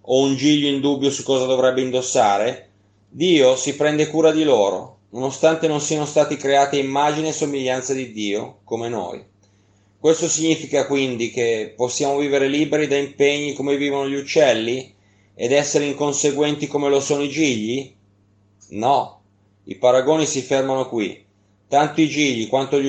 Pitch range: 105-140 Hz